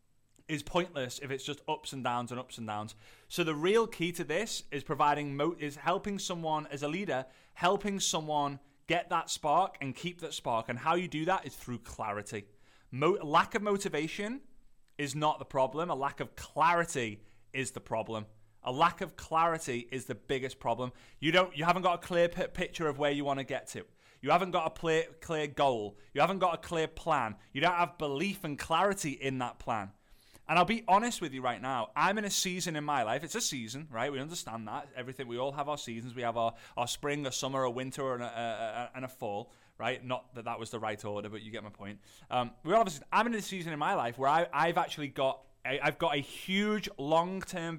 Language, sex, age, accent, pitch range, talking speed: English, male, 30-49, British, 125-175 Hz, 230 wpm